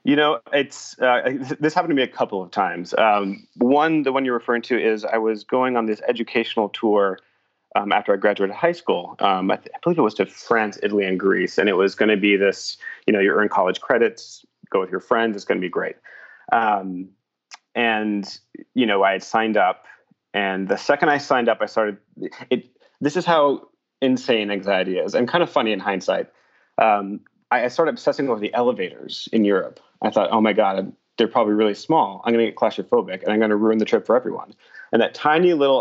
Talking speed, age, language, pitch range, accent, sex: 225 wpm, 30-49, English, 105-130 Hz, American, male